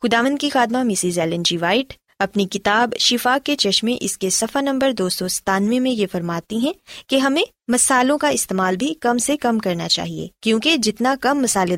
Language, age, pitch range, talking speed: Urdu, 20-39, 180-255 Hz, 190 wpm